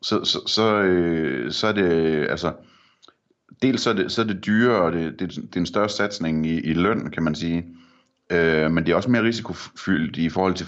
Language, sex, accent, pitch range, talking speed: Danish, male, native, 80-100 Hz, 215 wpm